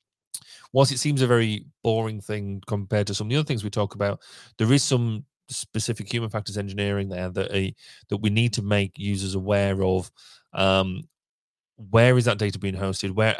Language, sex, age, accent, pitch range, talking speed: English, male, 30-49, British, 95-110 Hz, 195 wpm